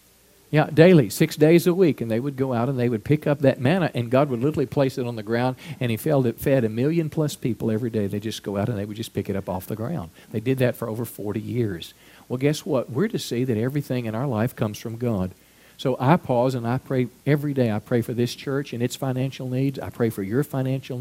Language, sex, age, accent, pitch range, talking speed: English, male, 50-69, American, 115-150 Hz, 270 wpm